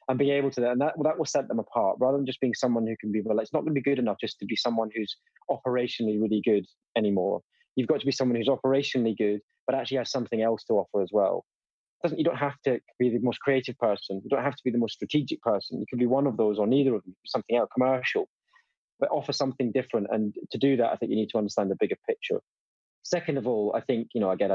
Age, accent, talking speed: 20-39, British, 275 wpm